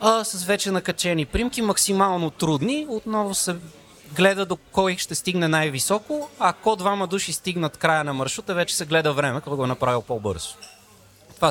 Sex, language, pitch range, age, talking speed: male, Bulgarian, 140-190 Hz, 30-49, 165 wpm